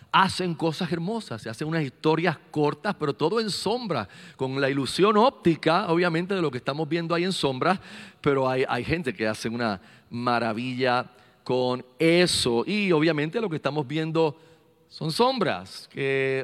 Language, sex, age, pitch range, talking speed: Spanish, male, 40-59, 135-180 Hz, 160 wpm